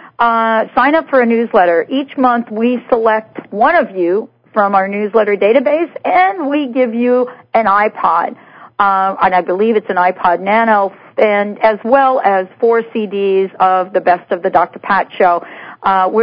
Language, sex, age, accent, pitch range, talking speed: English, female, 50-69, American, 195-240 Hz, 170 wpm